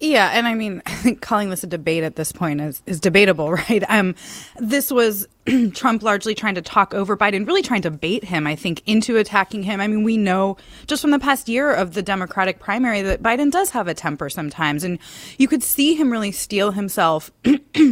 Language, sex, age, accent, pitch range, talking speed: English, female, 20-39, American, 170-220 Hz, 220 wpm